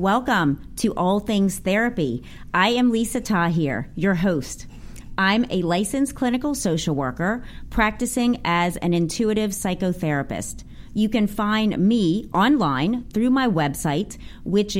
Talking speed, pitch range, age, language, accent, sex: 125 wpm, 165-215 Hz, 30-49, English, American, female